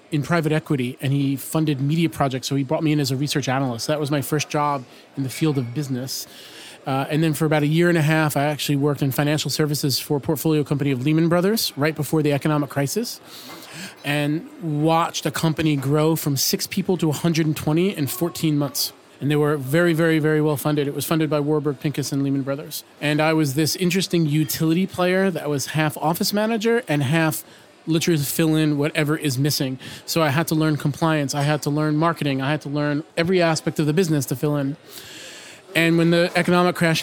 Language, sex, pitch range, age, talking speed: English, male, 145-165 Hz, 30-49, 215 wpm